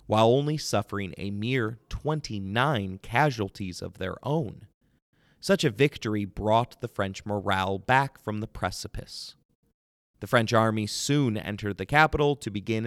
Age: 30-49